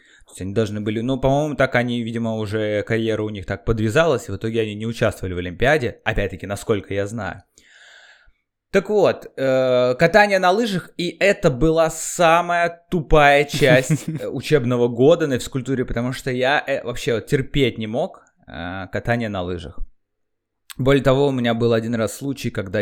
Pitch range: 110-155 Hz